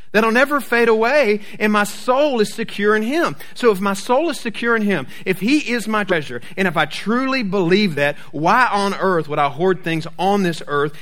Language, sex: English, male